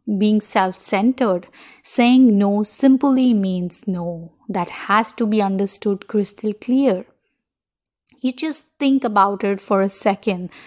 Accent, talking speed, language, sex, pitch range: Indian, 125 wpm, English, female, 200-245 Hz